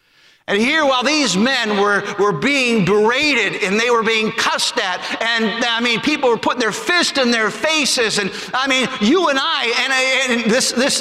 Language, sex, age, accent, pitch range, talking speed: English, male, 50-69, American, 235-320 Hz, 200 wpm